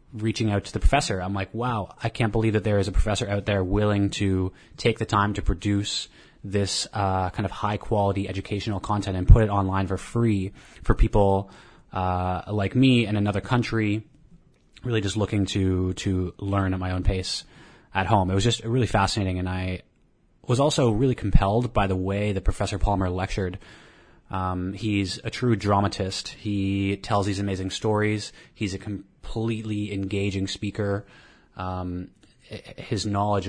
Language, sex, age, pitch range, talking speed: English, male, 20-39, 95-110 Hz, 170 wpm